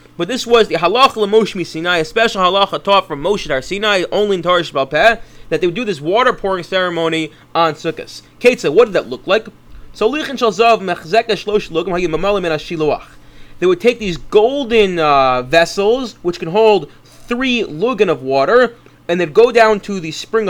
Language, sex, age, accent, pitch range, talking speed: English, male, 30-49, American, 160-225 Hz, 160 wpm